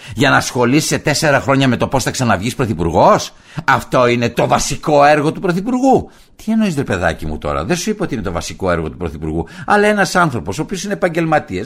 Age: 60-79